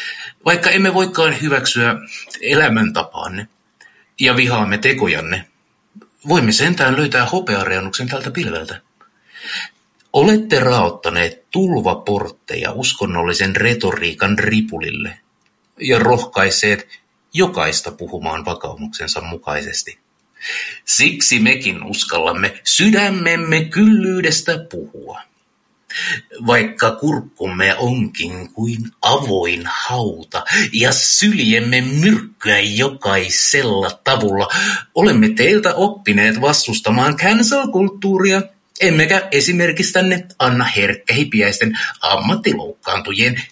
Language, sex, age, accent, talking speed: Finnish, male, 60-79, native, 75 wpm